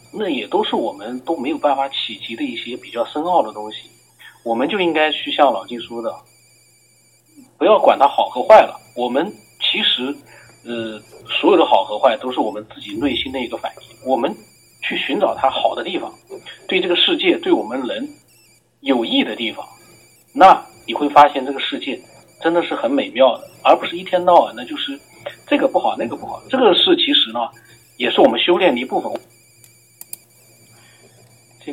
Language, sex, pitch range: Chinese, male, 115-170 Hz